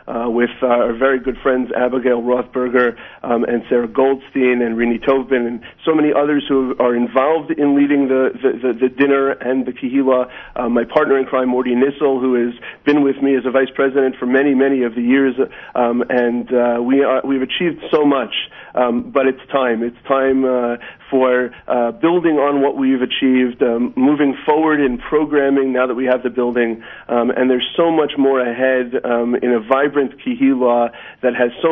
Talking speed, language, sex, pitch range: 195 wpm, English, male, 120-135 Hz